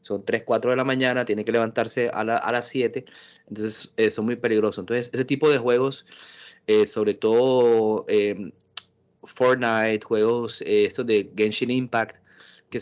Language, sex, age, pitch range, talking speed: Spanish, male, 20-39, 105-125 Hz, 165 wpm